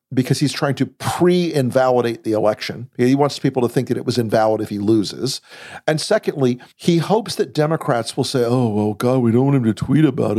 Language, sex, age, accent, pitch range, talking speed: English, male, 50-69, American, 120-155 Hz, 215 wpm